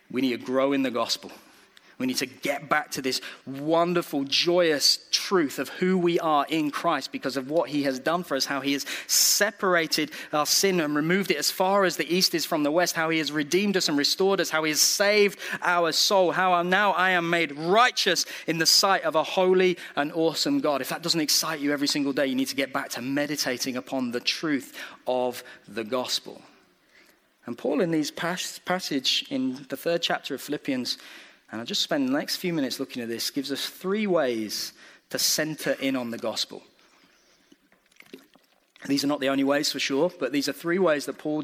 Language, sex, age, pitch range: English, male, 30-49, 135-180 Hz